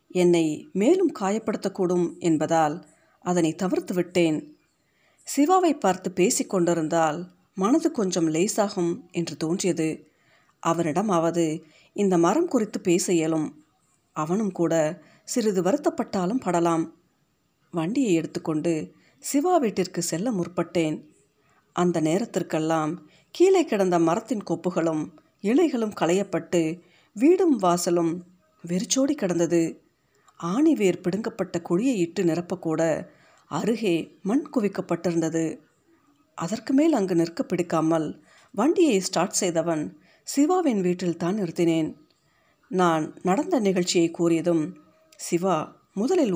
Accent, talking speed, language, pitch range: native, 90 wpm, Tamil, 165-215 Hz